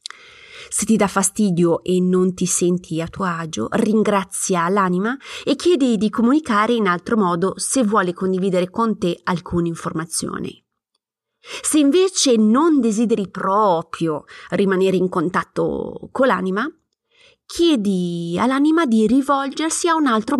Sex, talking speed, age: female, 130 wpm, 30-49